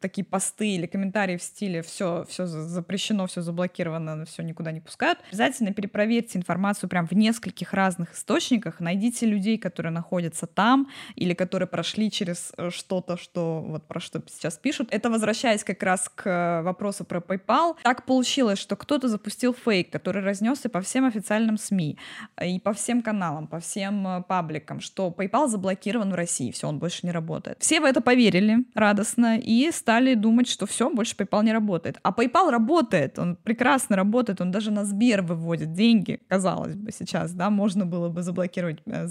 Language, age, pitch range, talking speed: Russian, 20-39, 180-230 Hz, 170 wpm